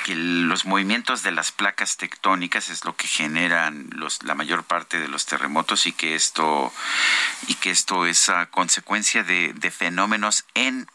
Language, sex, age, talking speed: Spanish, male, 50-69, 170 wpm